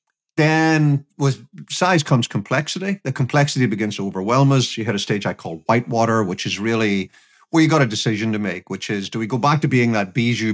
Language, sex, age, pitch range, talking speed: English, male, 50-69, 110-145 Hz, 215 wpm